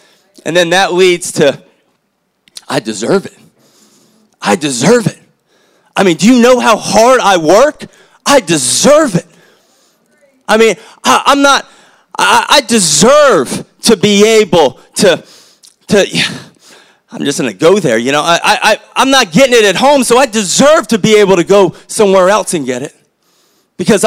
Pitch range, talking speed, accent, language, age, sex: 180-230 Hz, 155 wpm, American, English, 30-49, male